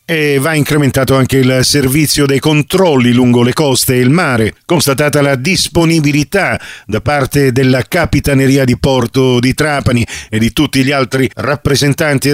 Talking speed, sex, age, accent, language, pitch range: 150 wpm, male, 50-69, native, Italian, 120-150 Hz